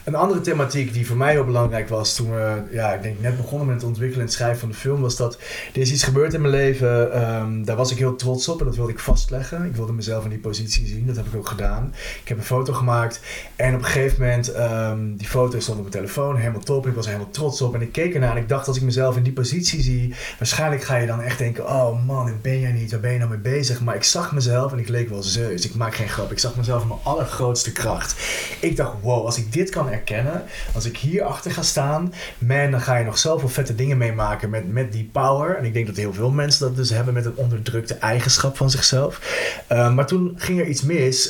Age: 30-49